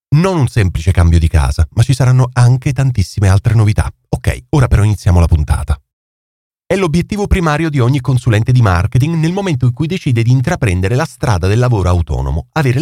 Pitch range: 95-145 Hz